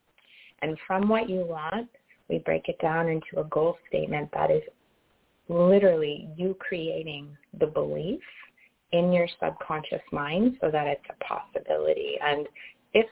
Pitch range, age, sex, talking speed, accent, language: 160-220 Hz, 30-49, female, 140 wpm, American, English